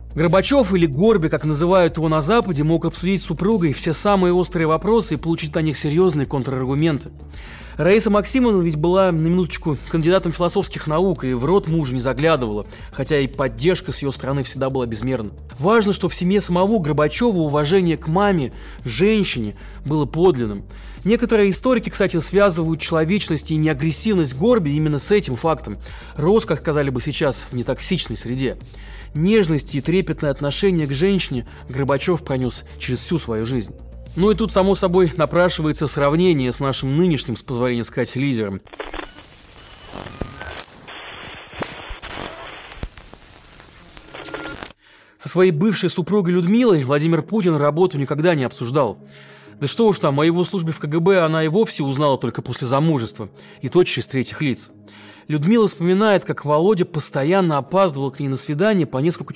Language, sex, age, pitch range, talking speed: Russian, male, 20-39, 130-185 Hz, 150 wpm